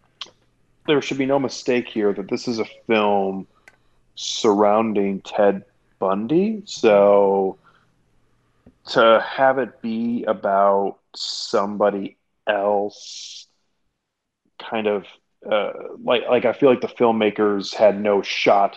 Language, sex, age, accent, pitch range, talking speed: English, male, 30-49, American, 100-130 Hz, 110 wpm